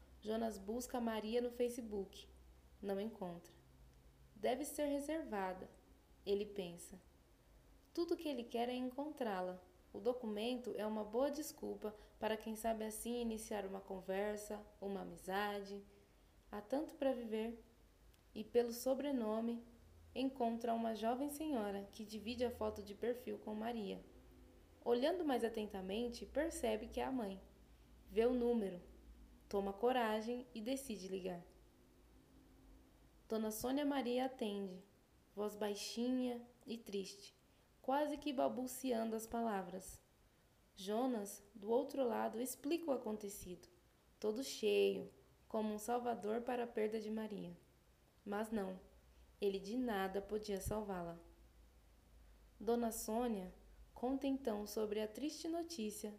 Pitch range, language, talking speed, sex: 200-245 Hz, Portuguese, 120 wpm, female